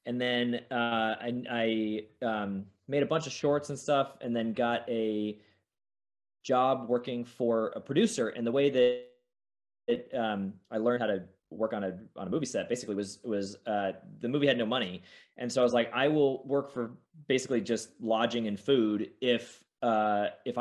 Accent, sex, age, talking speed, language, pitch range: American, male, 20-39, 190 wpm, English, 110-130 Hz